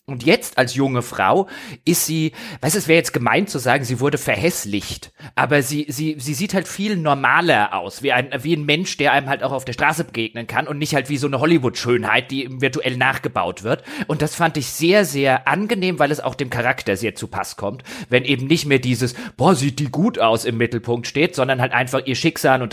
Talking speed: 225 wpm